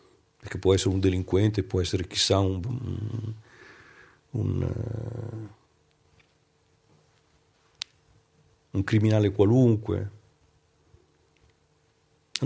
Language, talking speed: Italian, 65 wpm